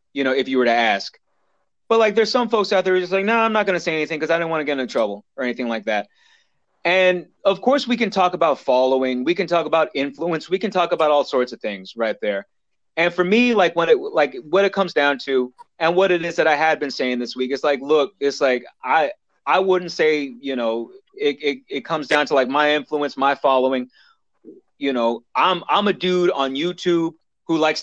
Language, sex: English, male